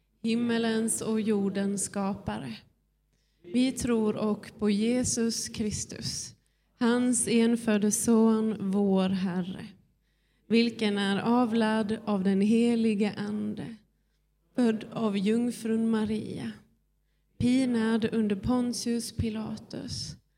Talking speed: 90 wpm